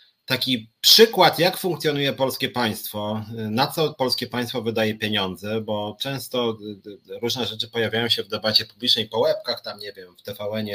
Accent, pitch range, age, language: native, 110-135 Hz, 30-49, Polish